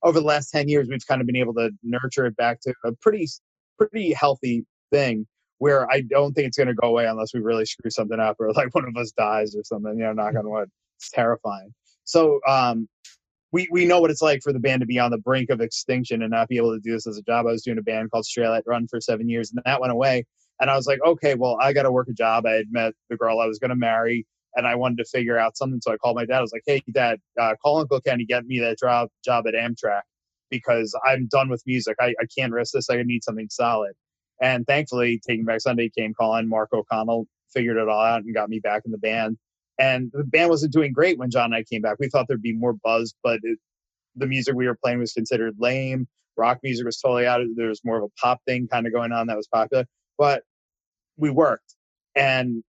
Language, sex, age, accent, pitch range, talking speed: English, male, 30-49, American, 115-135 Hz, 255 wpm